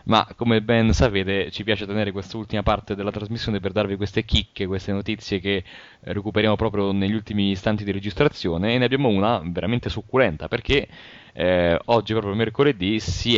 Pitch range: 95-110 Hz